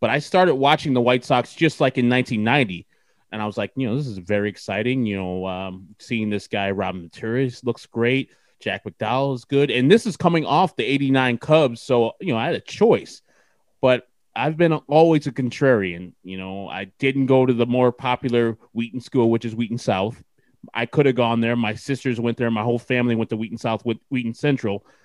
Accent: American